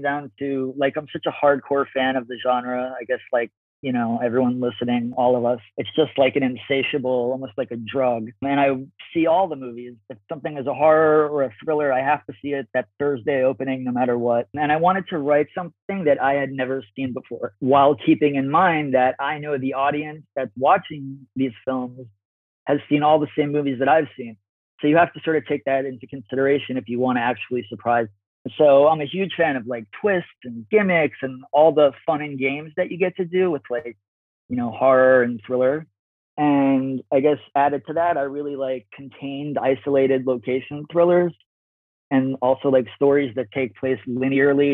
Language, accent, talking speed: English, American, 205 wpm